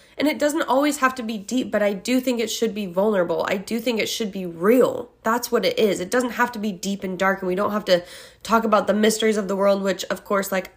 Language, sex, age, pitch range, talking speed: English, female, 20-39, 195-255 Hz, 285 wpm